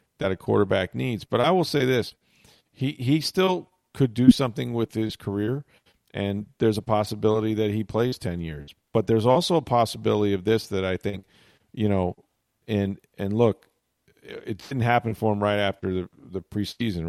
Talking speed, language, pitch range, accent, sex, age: 185 wpm, English, 90-110 Hz, American, male, 40-59